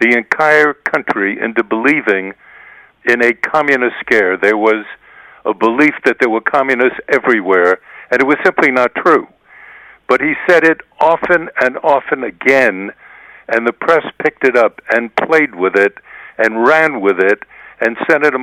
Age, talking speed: 60-79, 155 wpm